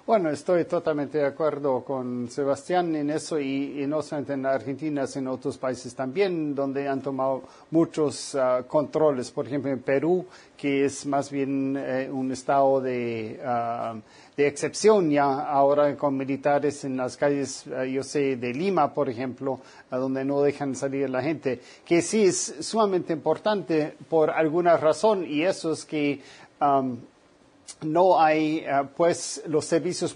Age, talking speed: 40-59, 150 wpm